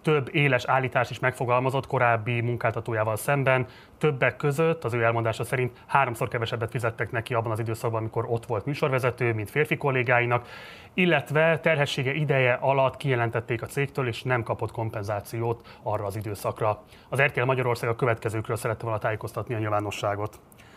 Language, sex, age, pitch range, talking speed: Hungarian, male, 30-49, 115-140 Hz, 150 wpm